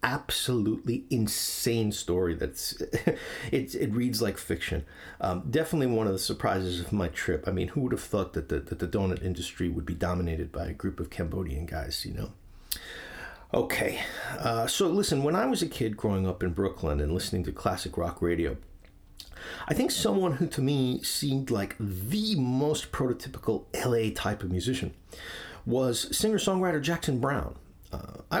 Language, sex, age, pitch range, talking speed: English, male, 50-69, 90-125 Hz, 170 wpm